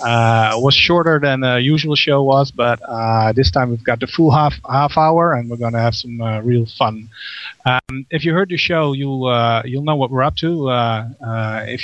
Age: 30-49